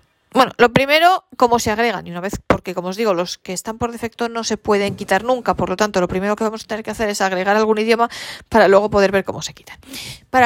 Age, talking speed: 40-59, 265 wpm